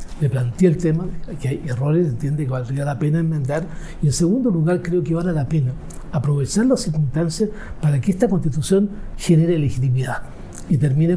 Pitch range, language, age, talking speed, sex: 145-180 Hz, Spanish, 60-79, 185 wpm, male